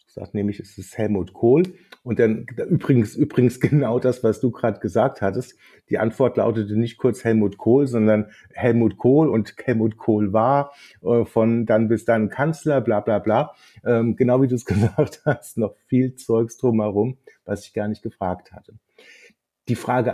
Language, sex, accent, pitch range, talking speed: German, male, German, 105-130 Hz, 180 wpm